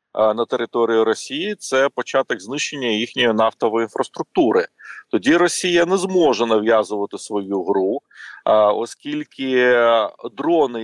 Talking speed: 105 wpm